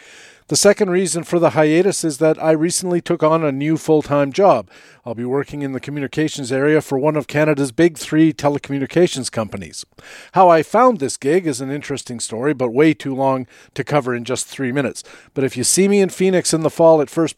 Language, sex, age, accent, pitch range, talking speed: English, male, 50-69, American, 135-165 Hz, 215 wpm